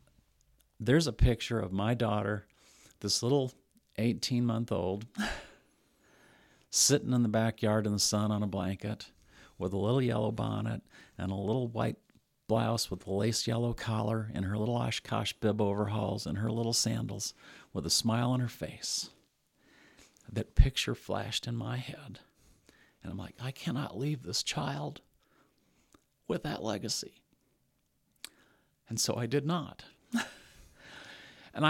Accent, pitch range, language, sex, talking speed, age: American, 105-120 Hz, English, male, 140 wpm, 50-69